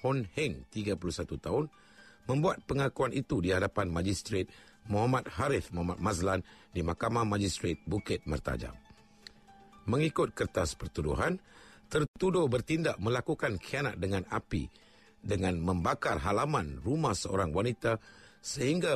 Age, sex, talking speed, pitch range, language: 50-69, male, 110 wpm, 85-115 Hz, Malay